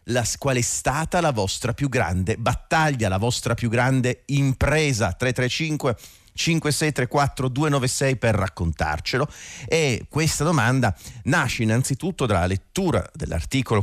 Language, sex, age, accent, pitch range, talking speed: Italian, male, 40-59, native, 90-125 Hz, 110 wpm